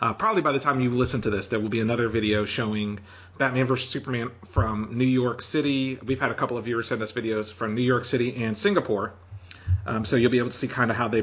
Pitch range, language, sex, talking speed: 105-130 Hz, English, male, 260 wpm